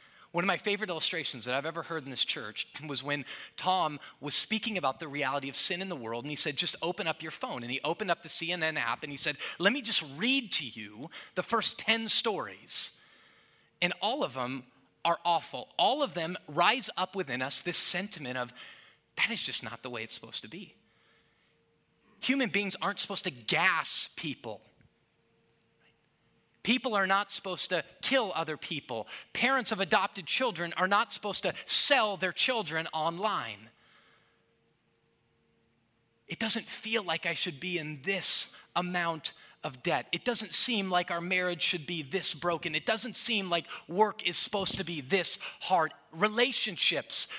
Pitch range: 150-210 Hz